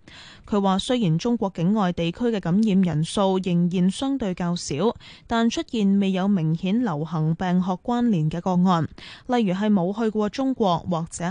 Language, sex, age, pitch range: Chinese, female, 10-29, 170-230 Hz